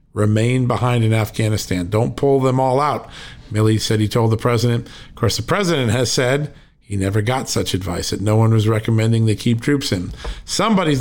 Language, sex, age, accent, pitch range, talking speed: English, male, 50-69, American, 105-130 Hz, 195 wpm